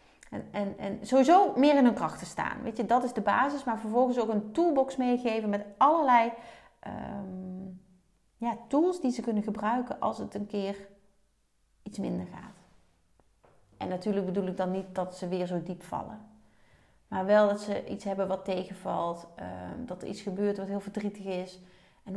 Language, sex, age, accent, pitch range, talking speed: Dutch, female, 30-49, Dutch, 195-250 Hz, 165 wpm